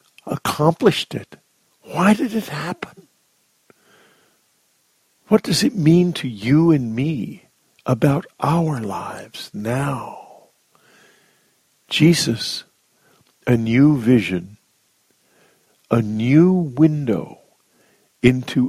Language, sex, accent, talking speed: English, male, American, 85 wpm